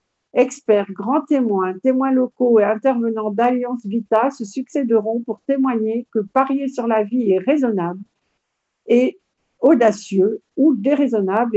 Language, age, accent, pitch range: French, 50-69, French, 215-270 Hz